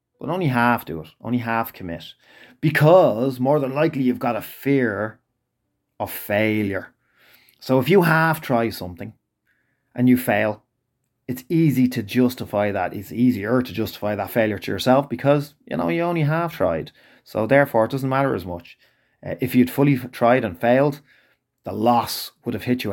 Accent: Irish